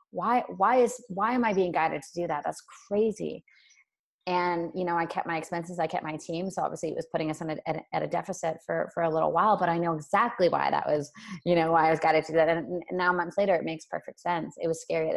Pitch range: 160-190 Hz